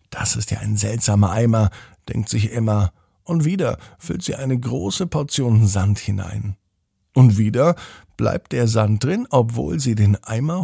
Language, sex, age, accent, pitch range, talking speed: German, male, 50-69, German, 105-130 Hz, 160 wpm